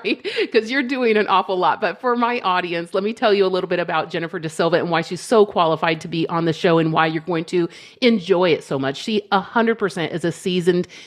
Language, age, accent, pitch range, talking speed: English, 40-59, American, 170-215 Hz, 245 wpm